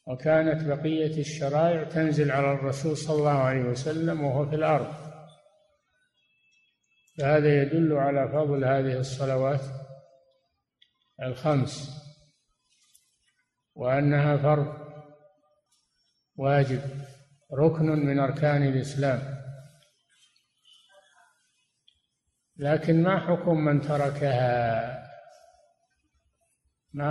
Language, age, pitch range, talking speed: Arabic, 50-69, 135-160 Hz, 75 wpm